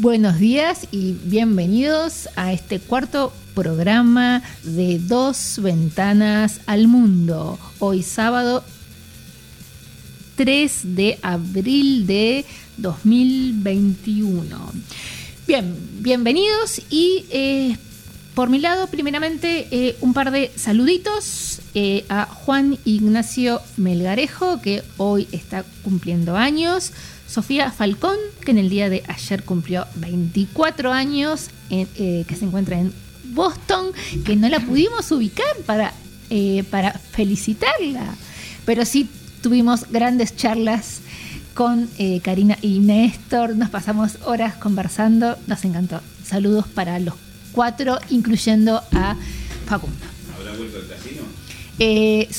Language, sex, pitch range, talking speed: Spanish, female, 195-260 Hz, 110 wpm